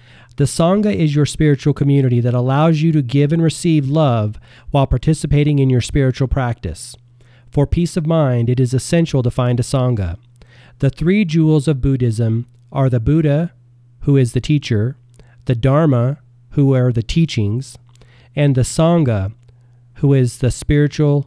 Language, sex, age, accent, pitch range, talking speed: English, male, 40-59, American, 120-145 Hz, 160 wpm